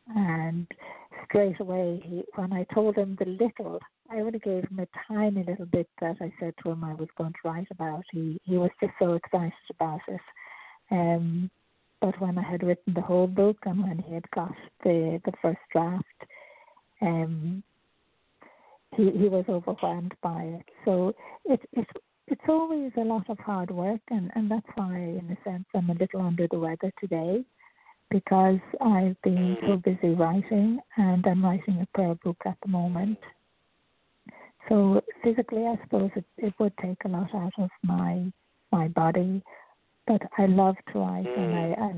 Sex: female